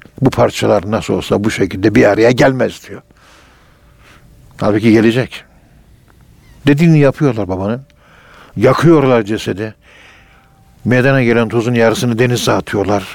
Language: Turkish